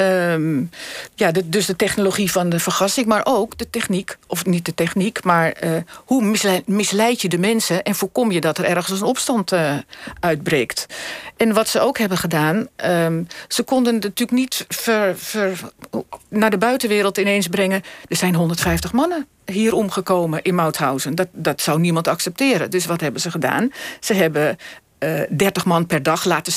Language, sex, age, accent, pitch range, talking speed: Dutch, female, 50-69, Dutch, 175-225 Hz, 175 wpm